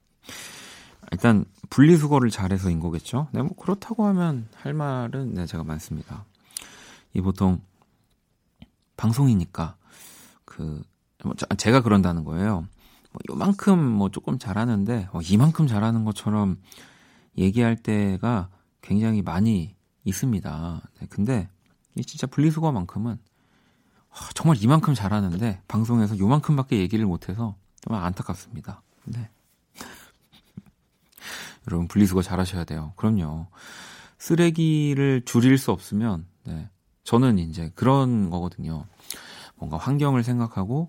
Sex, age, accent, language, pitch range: male, 40-59, native, Korean, 90-125 Hz